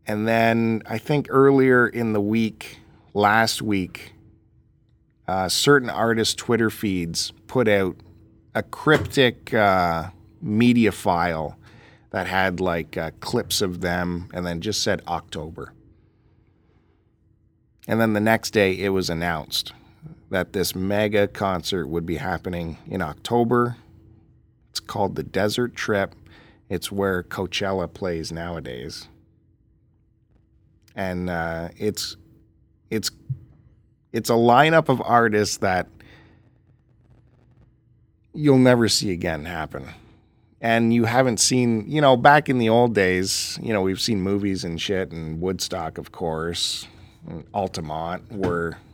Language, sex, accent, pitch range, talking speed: English, male, American, 90-115 Hz, 125 wpm